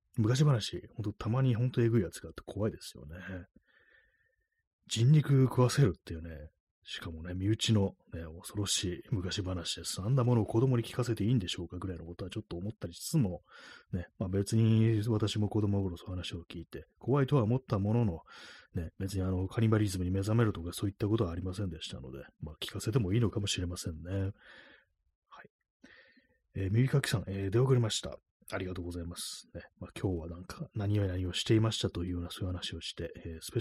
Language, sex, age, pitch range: Japanese, male, 30-49, 90-115 Hz